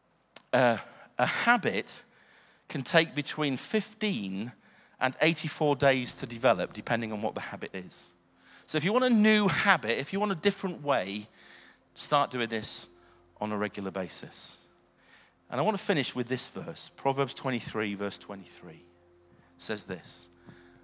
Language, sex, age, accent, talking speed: English, male, 40-59, British, 150 wpm